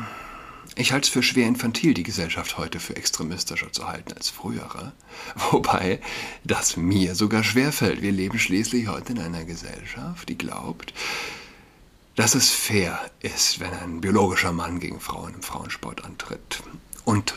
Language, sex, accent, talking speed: German, male, German, 150 wpm